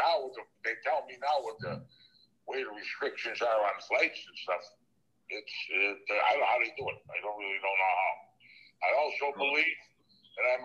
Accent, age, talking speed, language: American, 60-79, 190 wpm, English